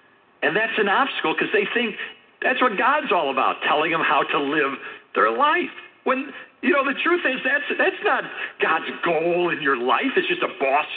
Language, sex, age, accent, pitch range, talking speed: English, male, 60-79, American, 235-350 Hz, 200 wpm